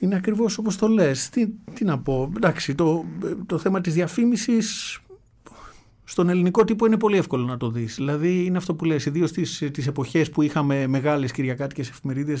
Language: Greek